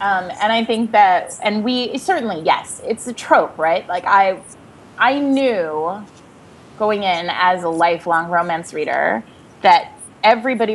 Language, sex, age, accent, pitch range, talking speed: English, female, 20-39, American, 170-220 Hz, 145 wpm